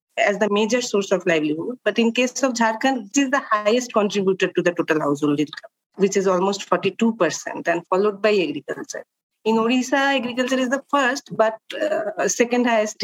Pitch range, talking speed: 200-250 Hz, 180 wpm